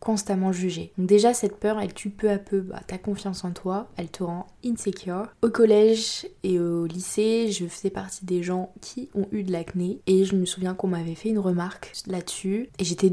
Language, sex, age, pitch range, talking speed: French, female, 20-39, 180-200 Hz, 215 wpm